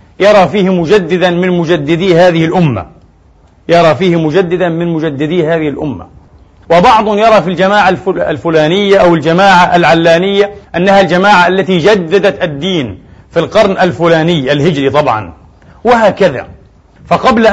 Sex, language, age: male, Arabic, 40-59